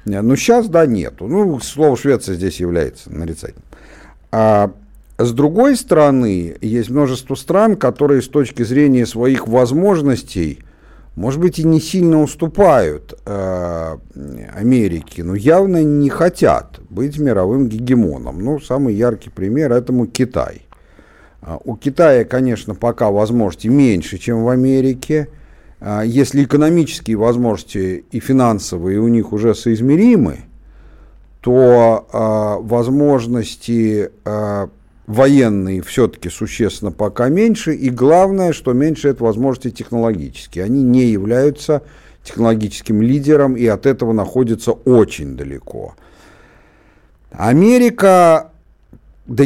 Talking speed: 110 wpm